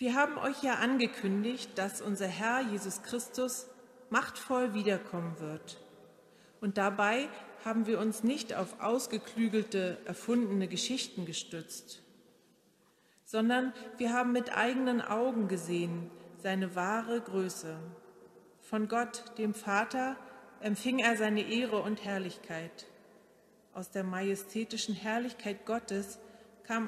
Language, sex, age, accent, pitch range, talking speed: German, female, 40-59, German, 190-240 Hz, 110 wpm